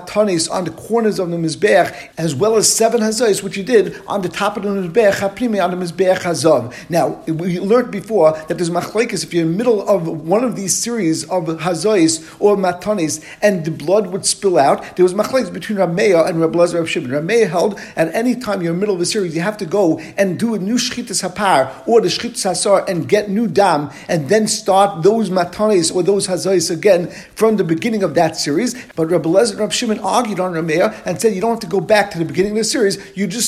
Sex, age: male, 50-69